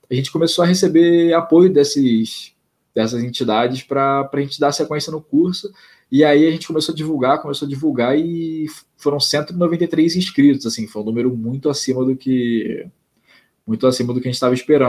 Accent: Brazilian